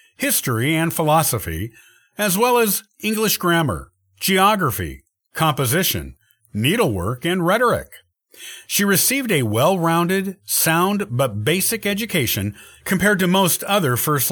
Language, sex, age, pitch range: English, male, 50-69, 120-180 Hz